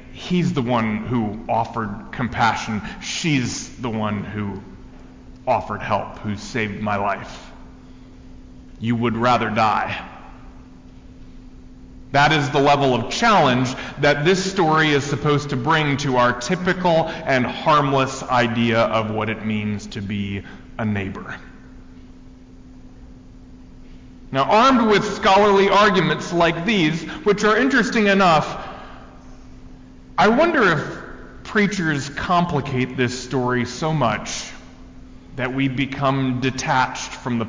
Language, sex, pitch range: English, male, 105-145 Hz